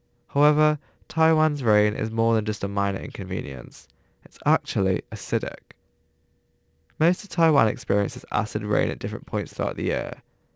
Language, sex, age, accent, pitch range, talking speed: English, male, 10-29, British, 105-135 Hz, 140 wpm